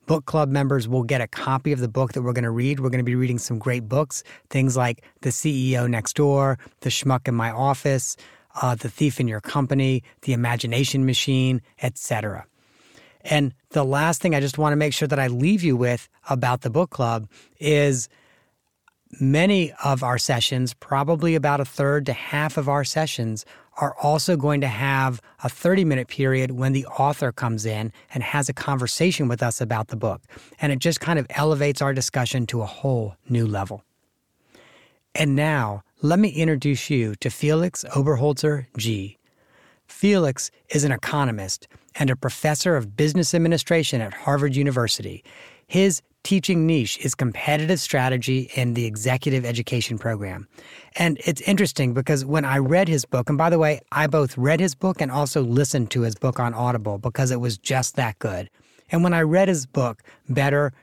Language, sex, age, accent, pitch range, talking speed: English, male, 30-49, American, 120-150 Hz, 180 wpm